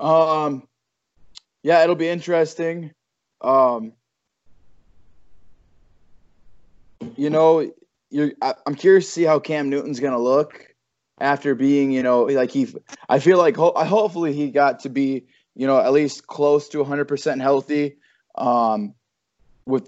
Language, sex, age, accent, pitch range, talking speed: English, male, 20-39, American, 125-155 Hz, 135 wpm